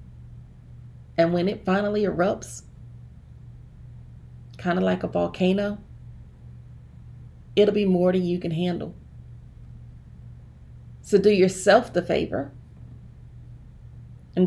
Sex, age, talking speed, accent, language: female, 30-49, 95 wpm, American, English